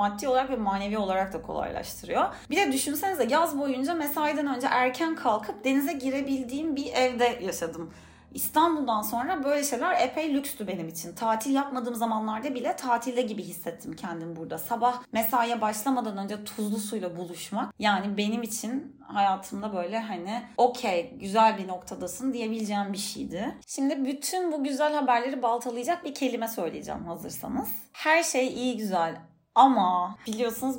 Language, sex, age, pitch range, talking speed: Turkish, female, 30-49, 205-265 Hz, 145 wpm